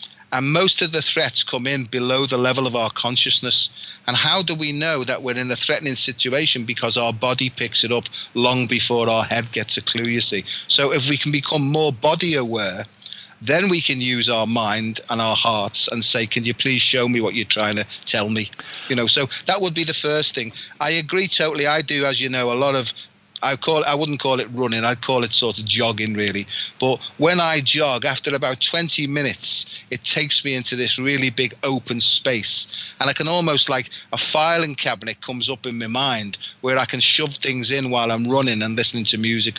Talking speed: 220 wpm